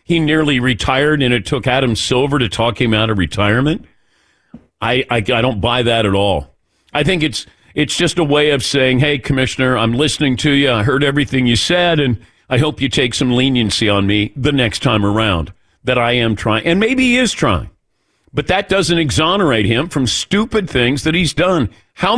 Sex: male